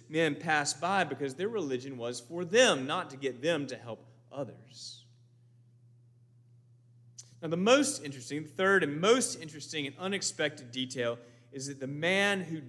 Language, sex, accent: English, male, American